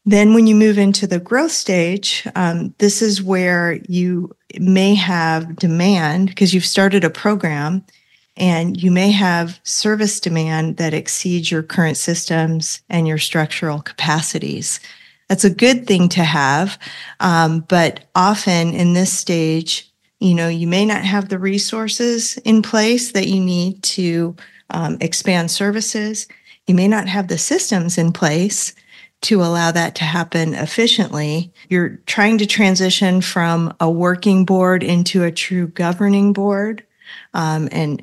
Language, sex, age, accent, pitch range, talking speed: English, female, 40-59, American, 170-200 Hz, 150 wpm